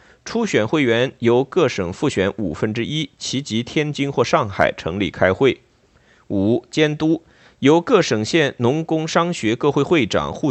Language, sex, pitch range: Chinese, male, 115-160 Hz